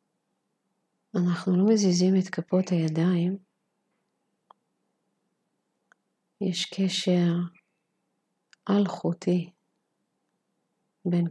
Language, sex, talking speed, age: Hebrew, female, 55 wpm, 40-59